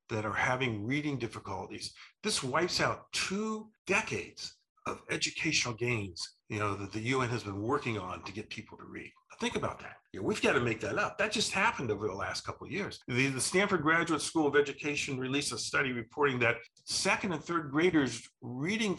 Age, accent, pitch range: 50-69, American, 110-165 Hz